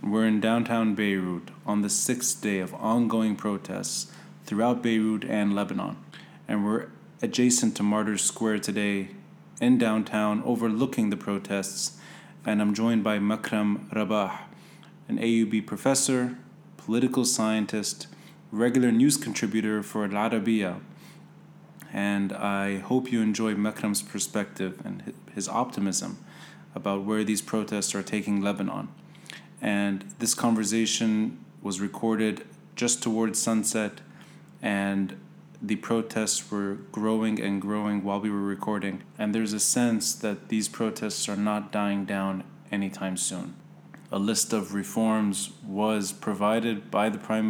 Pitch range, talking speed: 100-115 Hz, 130 wpm